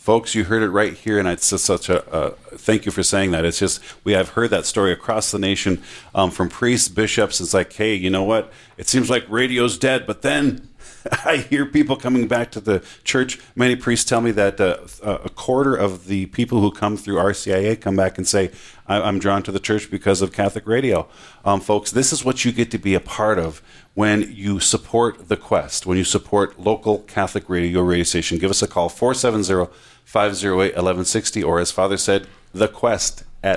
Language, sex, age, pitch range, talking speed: English, male, 40-59, 95-115 Hz, 215 wpm